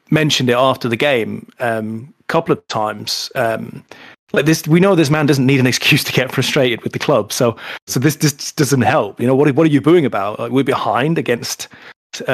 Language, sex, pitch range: English, male, 125-175 Hz